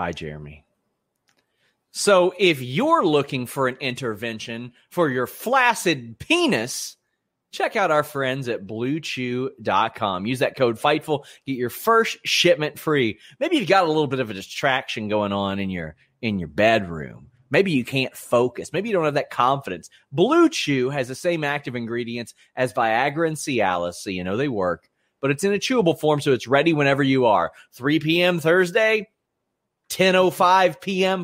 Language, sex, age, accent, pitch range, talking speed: English, male, 30-49, American, 115-160 Hz, 165 wpm